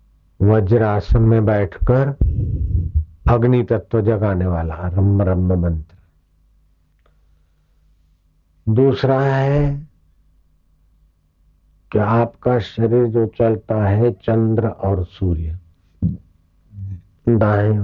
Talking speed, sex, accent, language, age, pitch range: 75 wpm, male, native, Hindi, 60-79, 80-110 Hz